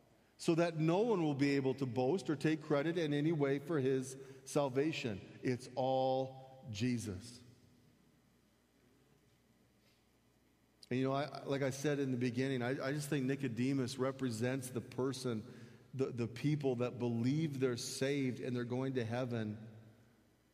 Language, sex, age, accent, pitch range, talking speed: English, male, 40-59, American, 125-150 Hz, 145 wpm